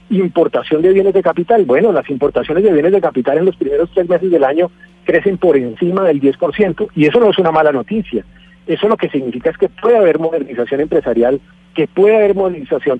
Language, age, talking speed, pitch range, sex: Spanish, 40-59, 210 wpm, 140-195 Hz, male